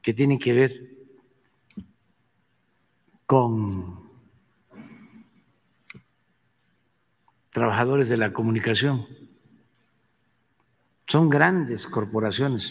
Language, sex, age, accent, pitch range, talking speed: Spanish, male, 60-79, Mexican, 115-160 Hz, 55 wpm